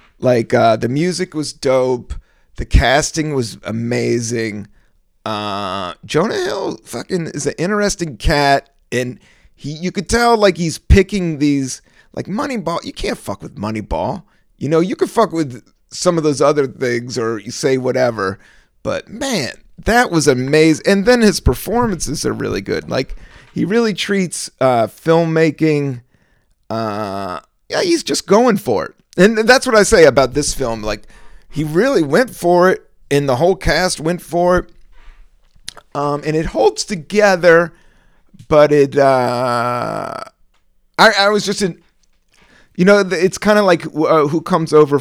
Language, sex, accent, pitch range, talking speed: English, male, American, 125-180 Hz, 155 wpm